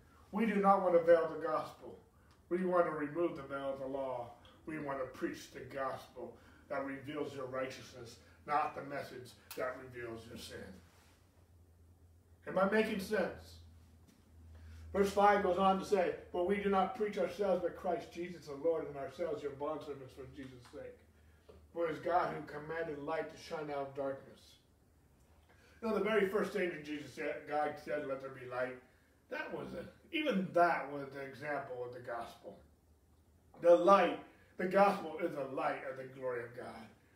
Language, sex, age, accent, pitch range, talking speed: English, male, 40-59, American, 115-170 Hz, 180 wpm